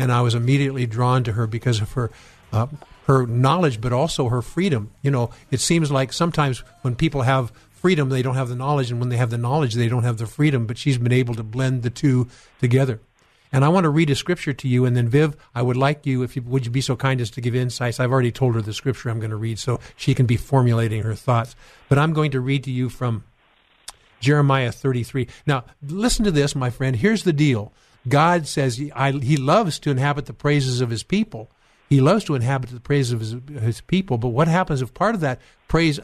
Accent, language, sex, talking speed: American, English, male, 240 wpm